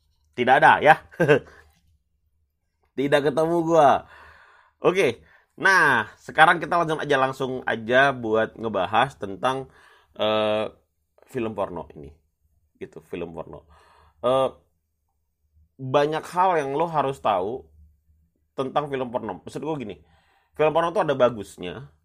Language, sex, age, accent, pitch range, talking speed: Indonesian, male, 30-49, native, 85-140 Hz, 115 wpm